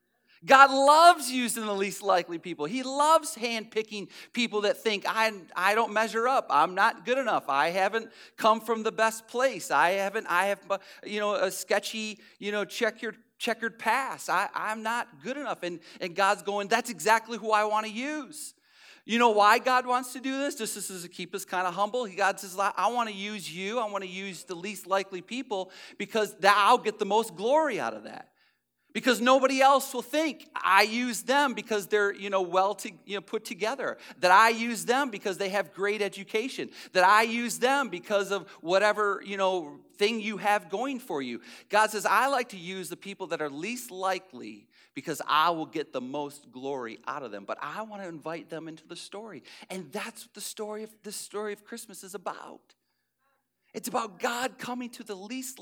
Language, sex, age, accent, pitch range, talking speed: English, male, 40-59, American, 195-235 Hz, 205 wpm